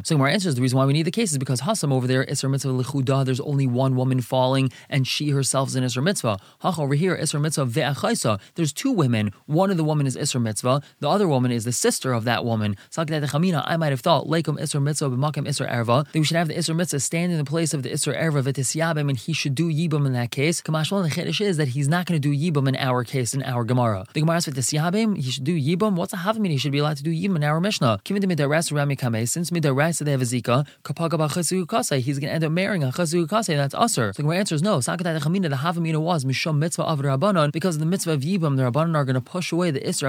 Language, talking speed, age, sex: English, 260 wpm, 20-39, male